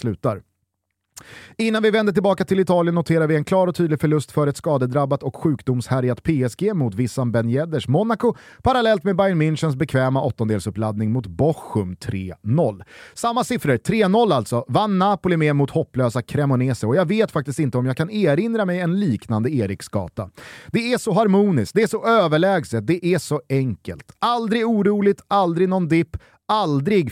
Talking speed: 165 wpm